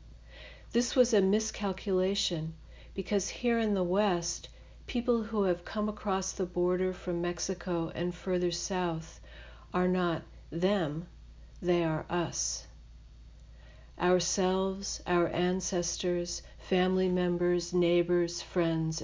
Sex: female